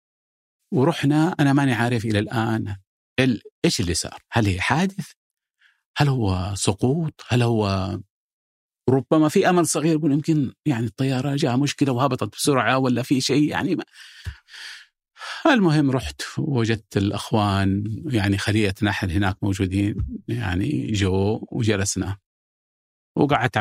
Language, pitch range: Arabic, 95-120 Hz